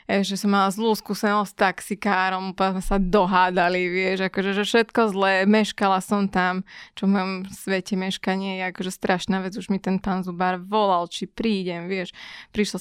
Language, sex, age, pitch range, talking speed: Slovak, female, 20-39, 195-240 Hz, 175 wpm